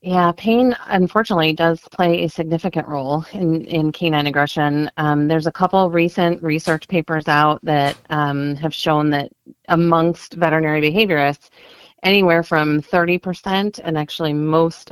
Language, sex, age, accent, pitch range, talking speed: English, female, 30-49, American, 145-175 Hz, 140 wpm